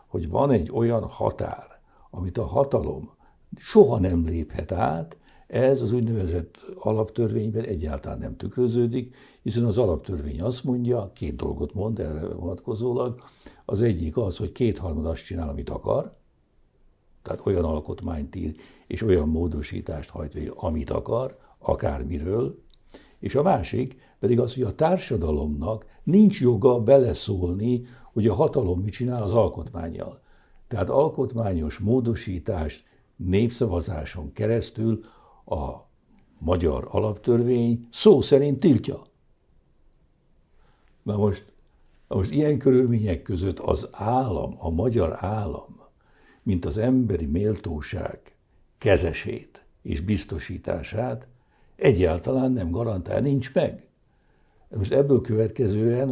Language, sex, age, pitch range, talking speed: Hungarian, male, 60-79, 90-125 Hz, 115 wpm